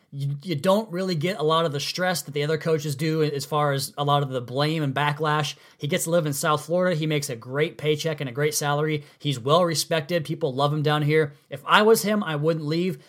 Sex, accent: male, American